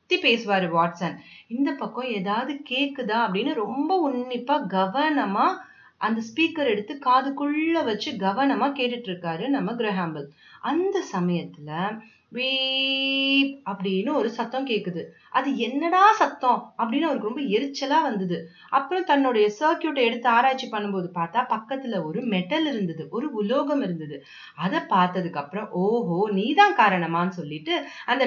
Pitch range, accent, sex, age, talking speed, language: 185-275 Hz, native, female, 30-49, 115 wpm, Tamil